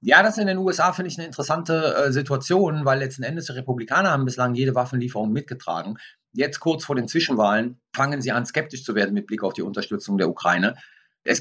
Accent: German